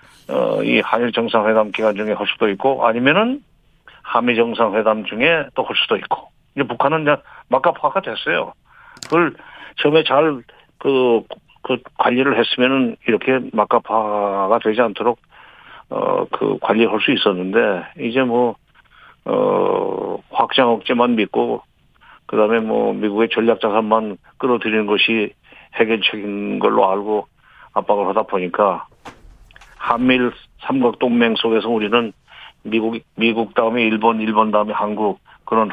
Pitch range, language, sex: 110-145 Hz, Korean, male